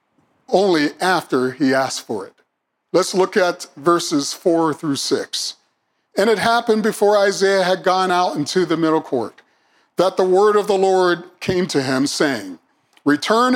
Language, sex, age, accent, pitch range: Japanese, male, 50-69, American, 155-205 Hz